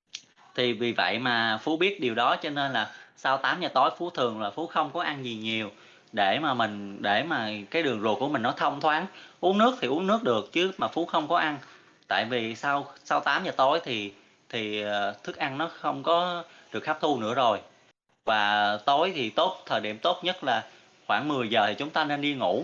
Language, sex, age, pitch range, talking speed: Vietnamese, male, 20-39, 115-170 Hz, 230 wpm